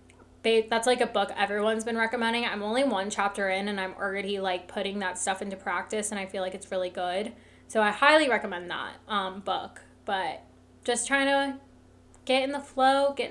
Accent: American